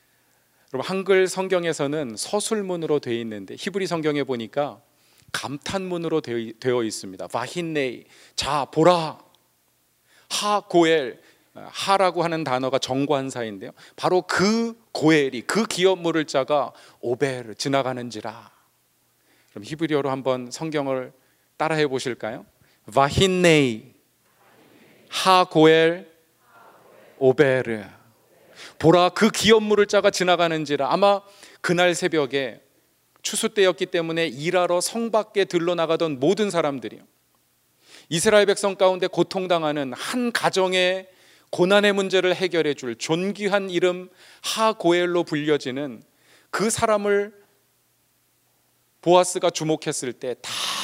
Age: 40-59